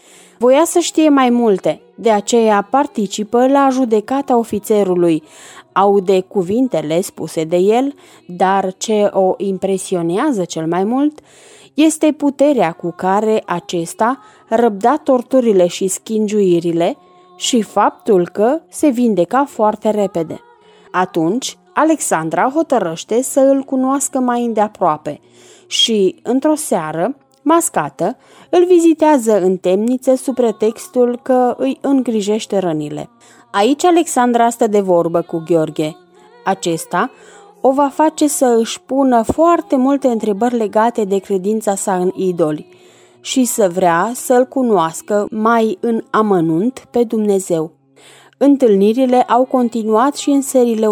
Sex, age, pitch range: female, 20-39, 185-265 Hz